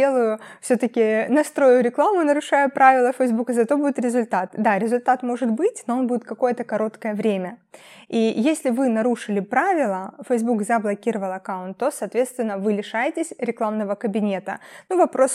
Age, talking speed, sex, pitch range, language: 20-39, 140 wpm, female, 210-255 Hz, Russian